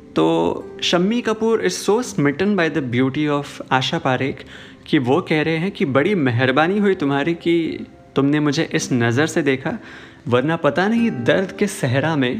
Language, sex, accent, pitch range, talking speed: Hindi, male, native, 130-175 Hz, 175 wpm